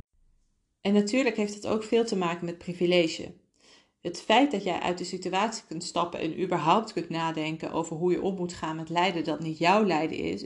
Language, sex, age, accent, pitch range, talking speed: Dutch, female, 40-59, Dutch, 165-205 Hz, 205 wpm